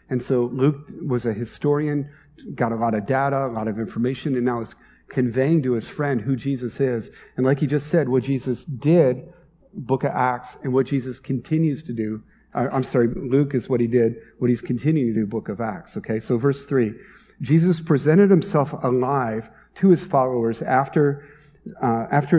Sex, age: male, 40-59